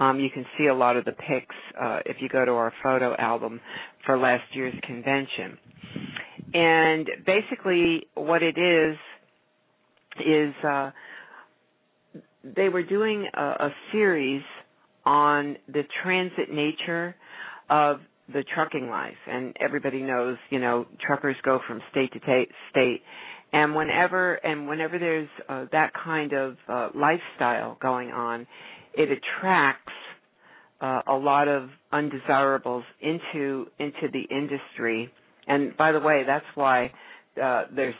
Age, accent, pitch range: 50-69, American, 130-155 Hz